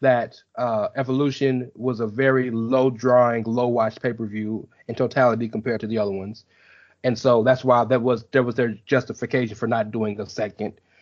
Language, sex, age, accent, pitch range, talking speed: English, male, 30-49, American, 120-160 Hz, 180 wpm